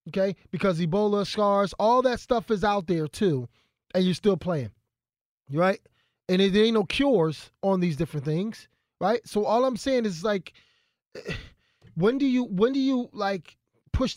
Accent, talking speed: American, 170 wpm